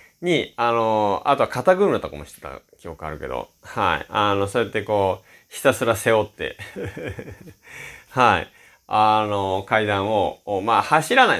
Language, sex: Japanese, male